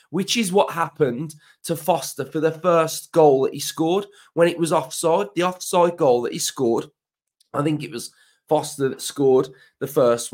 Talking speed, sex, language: 185 wpm, male, English